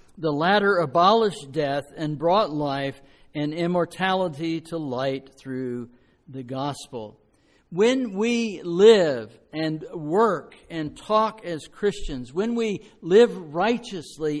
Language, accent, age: English, American, 60-79